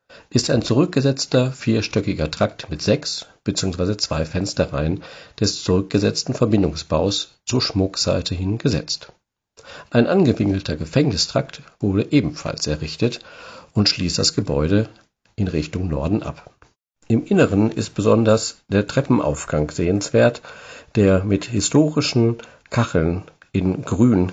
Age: 50-69